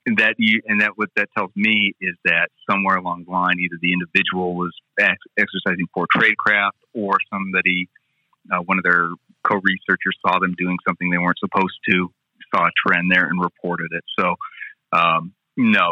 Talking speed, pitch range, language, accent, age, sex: 180 wpm, 85-95 Hz, English, American, 30-49, male